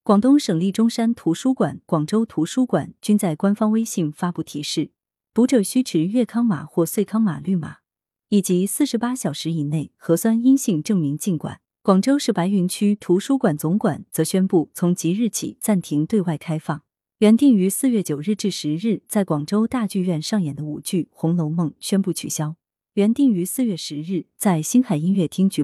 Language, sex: Chinese, female